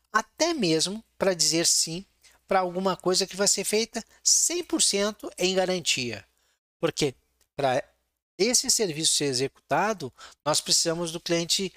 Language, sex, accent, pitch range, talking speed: Portuguese, male, Brazilian, 135-195 Hz, 125 wpm